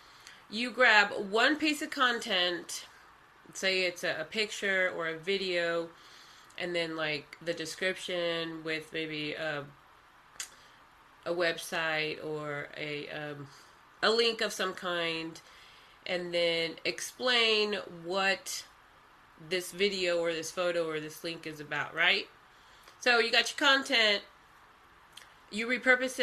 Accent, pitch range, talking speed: American, 165-220 Hz, 120 wpm